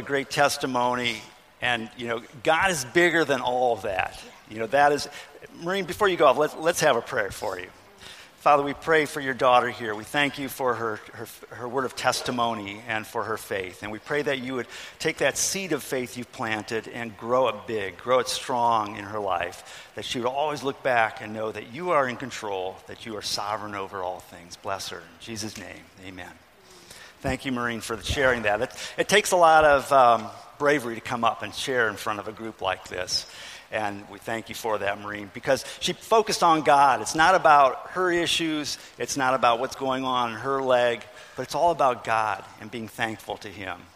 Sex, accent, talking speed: male, American, 220 wpm